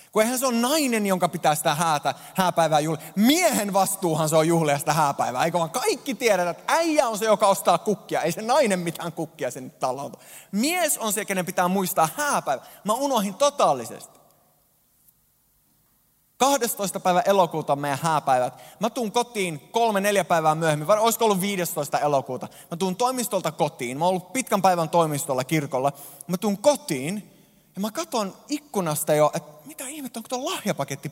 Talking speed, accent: 170 wpm, native